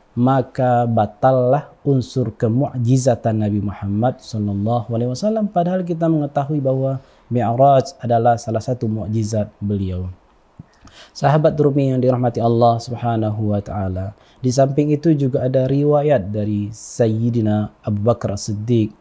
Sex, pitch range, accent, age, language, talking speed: male, 110-140 Hz, native, 20-39, Indonesian, 105 wpm